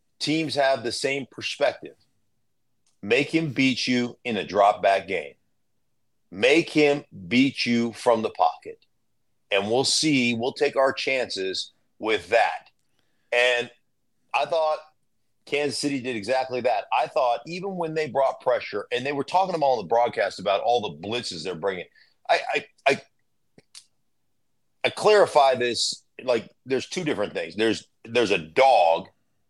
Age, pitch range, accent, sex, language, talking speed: 40-59, 115-145 Hz, American, male, English, 155 wpm